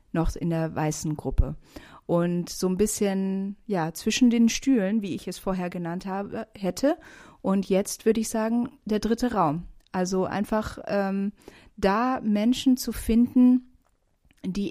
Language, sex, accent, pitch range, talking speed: German, female, German, 175-200 Hz, 145 wpm